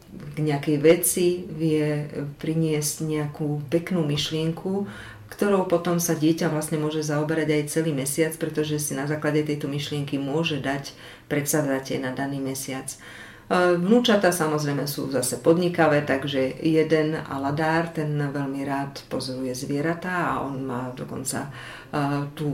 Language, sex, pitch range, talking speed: Slovak, female, 135-160 Hz, 130 wpm